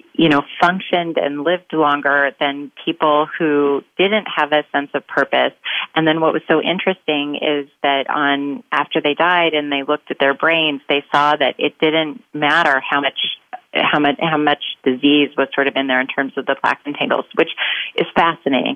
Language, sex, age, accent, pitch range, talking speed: English, female, 30-49, American, 145-170 Hz, 195 wpm